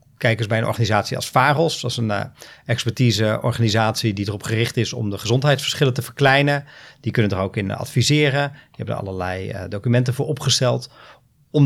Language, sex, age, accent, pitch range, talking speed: Dutch, male, 40-59, Dutch, 115-140 Hz, 185 wpm